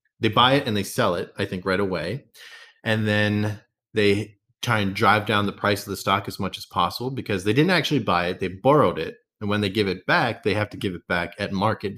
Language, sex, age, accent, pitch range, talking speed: English, male, 30-49, American, 95-125 Hz, 250 wpm